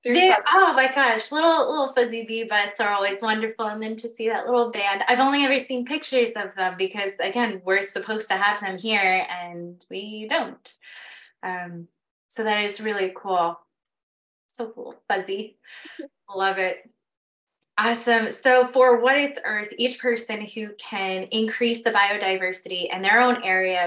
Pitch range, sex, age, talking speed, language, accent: 195-245 Hz, female, 20-39, 165 wpm, English, American